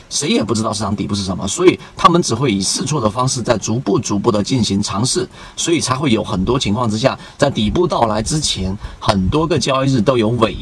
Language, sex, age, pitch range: Chinese, male, 40-59, 100-135 Hz